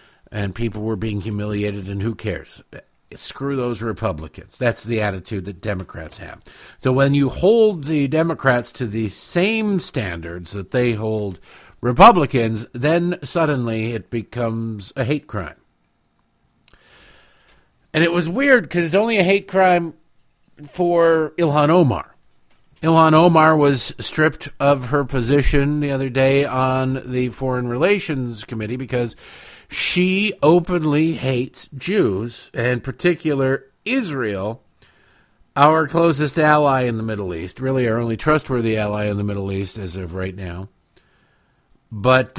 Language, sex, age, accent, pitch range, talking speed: English, male, 50-69, American, 105-155 Hz, 135 wpm